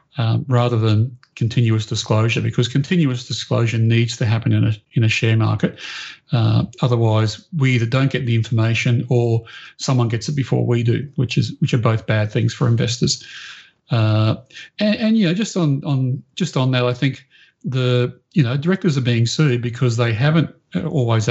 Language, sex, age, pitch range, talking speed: English, male, 40-59, 115-140 Hz, 185 wpm